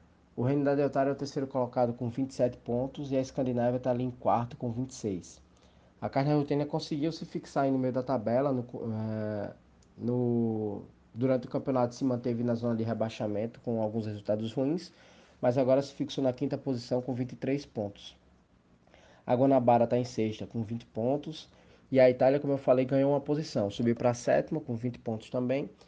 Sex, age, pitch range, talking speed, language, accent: male, 20-39, 110-135 Hz, 190 wpm, Portuguese, Brazilian